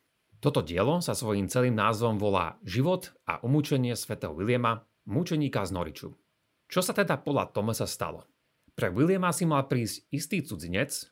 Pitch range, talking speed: 105-145 Hz, 150 wpm